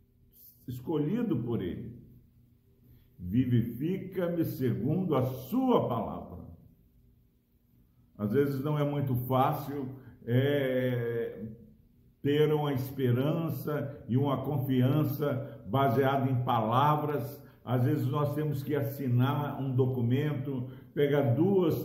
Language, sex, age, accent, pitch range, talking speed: Portuguese, male, 60-79, Brazilian, 125-155 Hz, 90 wpm